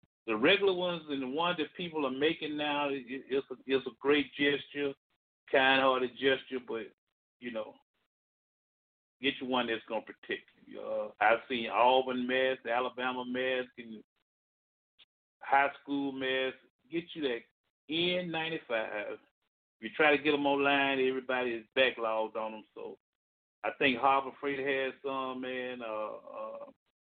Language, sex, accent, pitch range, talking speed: English, male, American, 125-145 Hz, 145 wpm